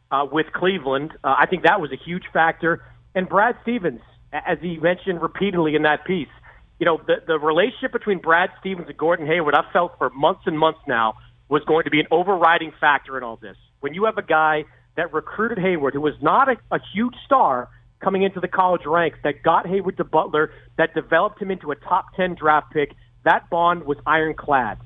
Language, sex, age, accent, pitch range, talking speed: English, male, 40-59, American, 145-185 Hz, 210 wpm